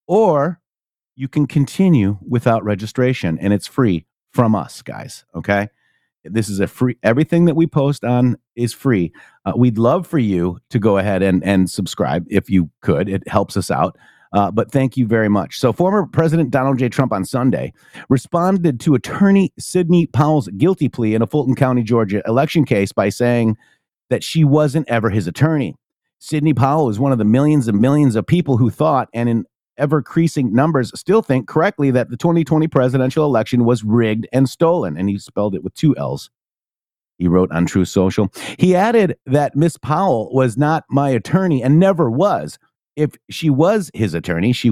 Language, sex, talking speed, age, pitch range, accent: English, male, 185 wpm, 40-59, 110-150 Hz, American